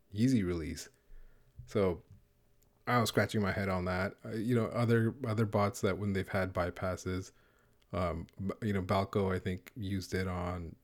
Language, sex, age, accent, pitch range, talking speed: English, male, 30-49, American, 90-110 Hz, 165 wpm